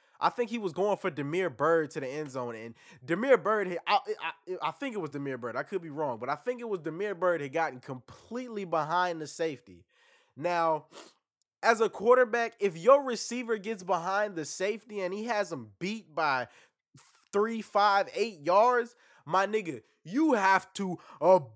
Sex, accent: male, American